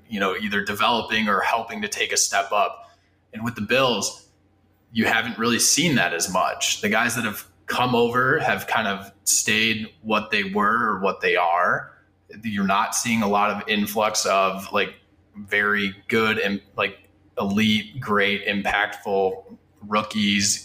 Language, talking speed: English, 165 wpm